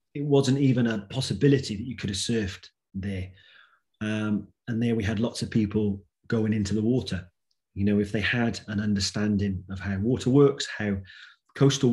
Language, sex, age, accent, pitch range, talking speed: English, male, 30-49, British, 100-120 Hz, 180 wpm